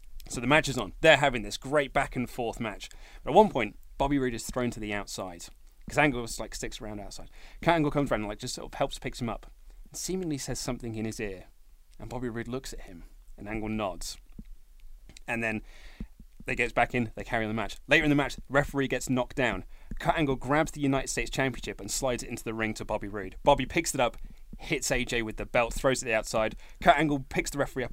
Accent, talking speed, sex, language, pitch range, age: British, 245 wpm, male, English, 110-140 Hz, 30-49